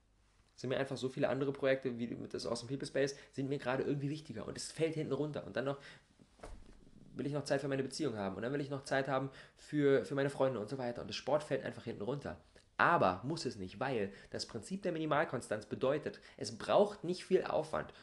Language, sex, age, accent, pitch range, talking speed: German, male, 20-39, German, 120-160 Hz, 235 wpm